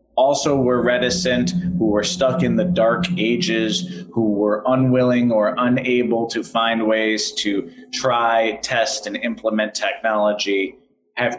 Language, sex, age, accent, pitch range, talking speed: English, male, 30-49, American, 105-130 Hz, 130 wpm